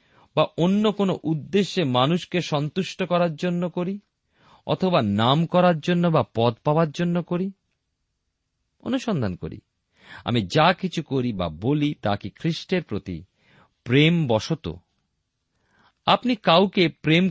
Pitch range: 115-175 Hz